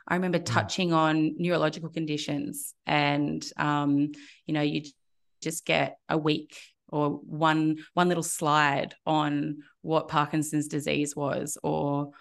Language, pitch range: English, 150-170 Hz